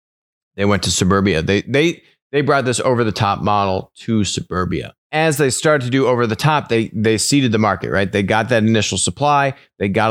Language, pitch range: English, 95-125 Hz